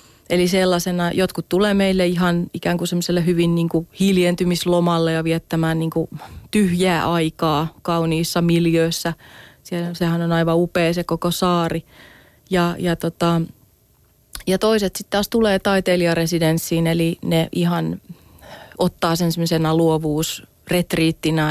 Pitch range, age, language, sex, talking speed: 165-175 Hz, 30-49, Finnish, female, 120 wpm